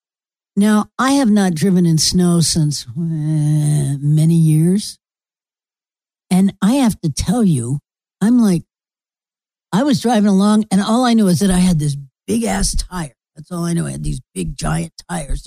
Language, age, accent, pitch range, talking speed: English, 60-79, American, 150-200 Hz, 170 wpm